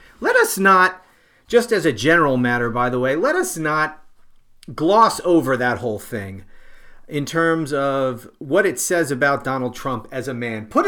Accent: American